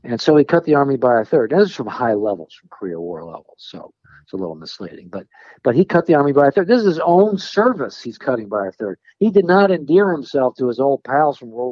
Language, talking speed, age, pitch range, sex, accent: English, 275 wpm, 60-79, 110-165 Hz, male, American